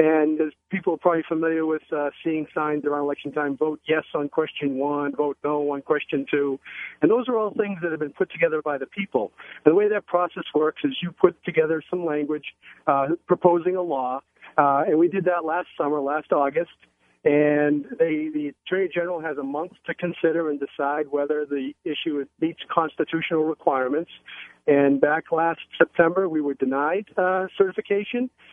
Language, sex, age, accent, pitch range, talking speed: English, male, 50-69, American, 145-175 Hz, 180 wpm